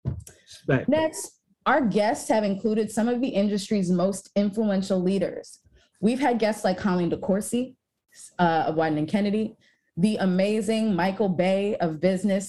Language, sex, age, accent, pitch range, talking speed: English, female, 20-39, American, 180-225 Hz, 140 wpm